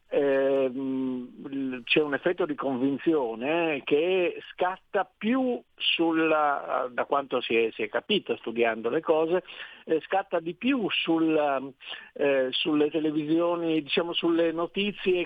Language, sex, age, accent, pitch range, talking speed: Italian, male, 50-69, native, 130-170 Hz, 115 wpm